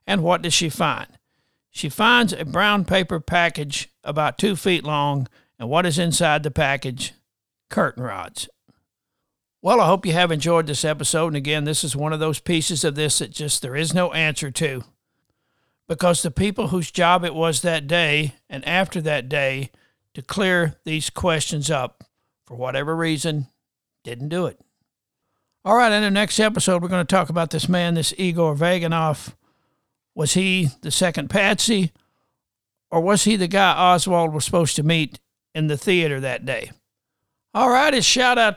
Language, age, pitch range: English, 60-79, 150-195 Hz